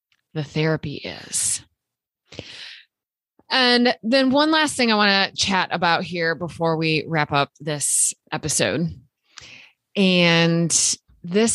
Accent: American